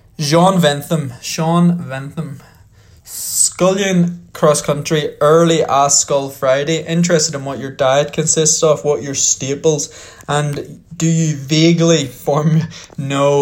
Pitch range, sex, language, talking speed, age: 130-155 Hz, male, English, 120 wpm, 20-39